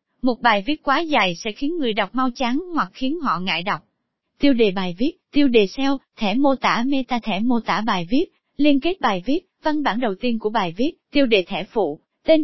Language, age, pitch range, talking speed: Vietnamese, 20-39, 210-280 Hz, 230 wpm